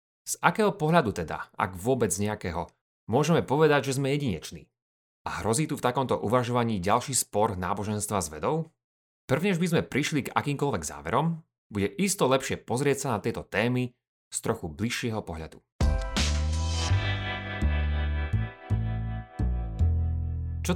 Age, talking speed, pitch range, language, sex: 30-49, 125 wpm, 95-140 Hz, Slovak, male